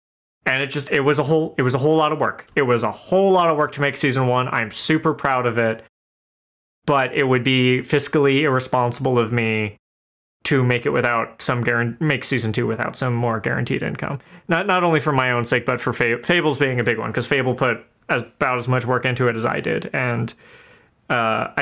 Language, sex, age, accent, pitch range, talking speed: English, male, 20-39, American, 120-150 Hz, 220 wpm